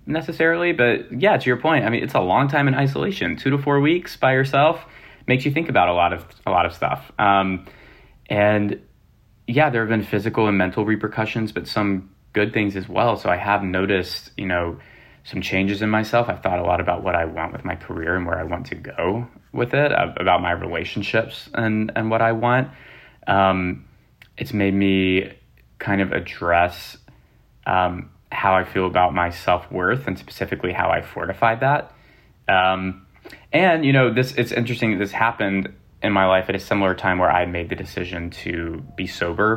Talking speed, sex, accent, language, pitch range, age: 195 wpm, male, American, English, 90-115 Hz, 20-39